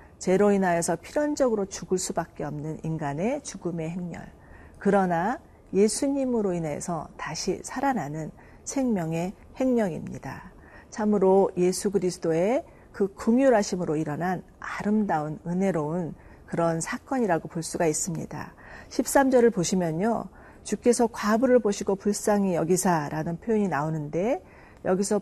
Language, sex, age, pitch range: Korean, female, 40-59, 170-235 Hz